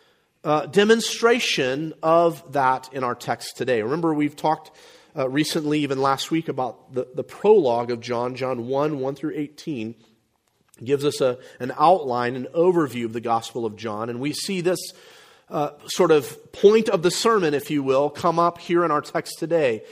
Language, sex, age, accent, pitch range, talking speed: English, male, 40-59, American, 135-190 Hz, 180 wpm